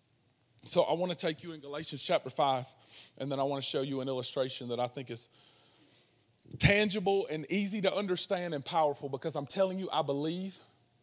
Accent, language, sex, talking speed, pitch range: American, English, male, 195 wpm, 140-235 Hz